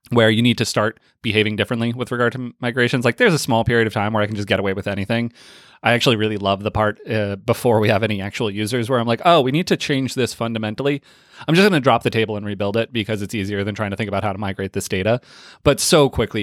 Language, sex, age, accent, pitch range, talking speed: English, male, 20-39, American, 100-120 Hz, 270 wpm